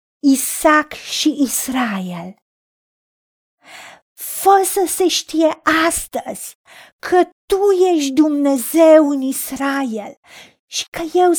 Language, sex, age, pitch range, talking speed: Romanian, female, 50-69, 230-335 Hz, 90 wpm